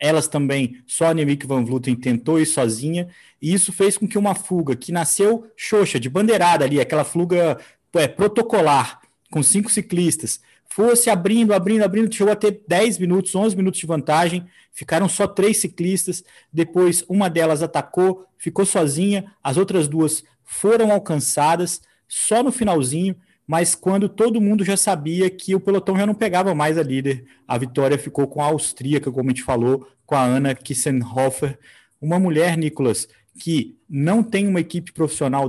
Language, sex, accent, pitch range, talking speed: Portuguese, male, Brazilian, 150-195 Hz, 165 wpm